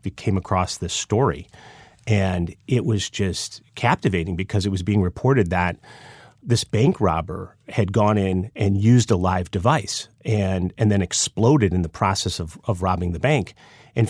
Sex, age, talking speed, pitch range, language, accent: male, 30-49, 165 wpm, 100-125 Hz, English, American